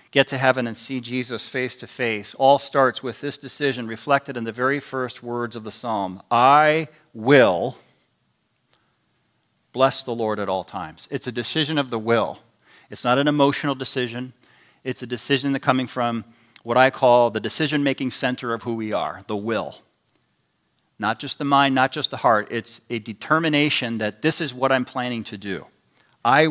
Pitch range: 115-140 Hz